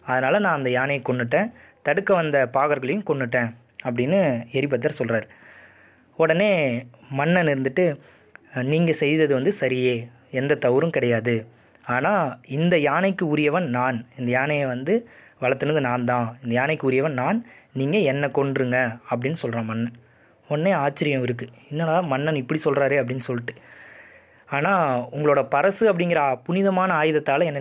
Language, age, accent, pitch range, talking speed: Tamil, 20-39, native, 125-170 Hz, 130 wpm